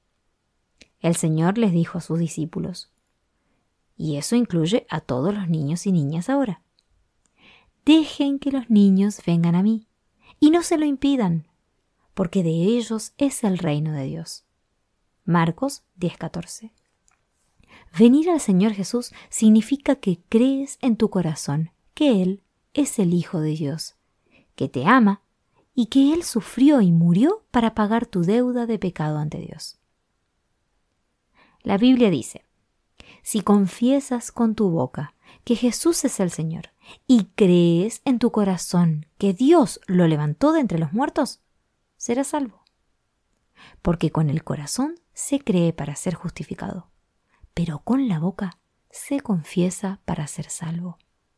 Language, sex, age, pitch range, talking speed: Spanish, female, 20-39, 165-240 Hz, 140 wpm